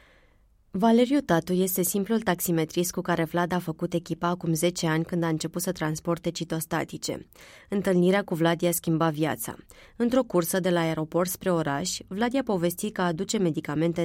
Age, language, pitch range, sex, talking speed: 20-39, Romanian, 160-185 Hz, female, 160 wpm